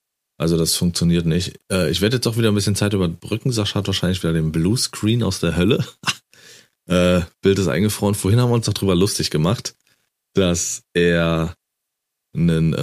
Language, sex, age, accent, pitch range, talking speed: German, male, 30-49, German, 85-100 Hz, 170 wpm